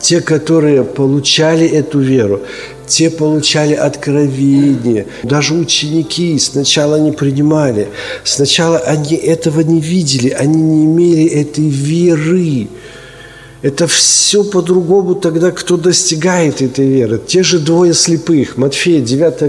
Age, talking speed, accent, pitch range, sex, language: 50-69, 115 wpm, native, 135-175 Hz, male, Ukrainian